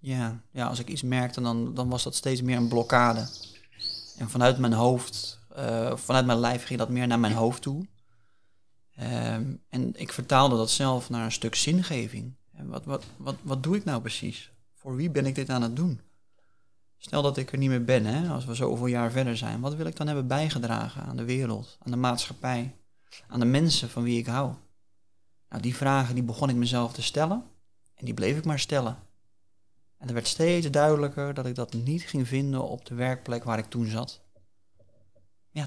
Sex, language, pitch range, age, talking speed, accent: male, Dutch, 110-135 Hz, 30-49, 205 wpm, Dutch